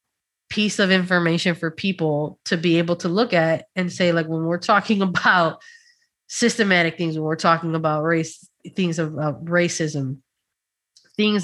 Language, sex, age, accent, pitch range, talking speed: English, female, 20-39, American, 160-185 Hz, 150 wpm